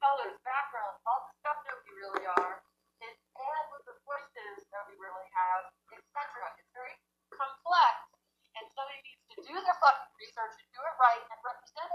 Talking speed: 180 wpm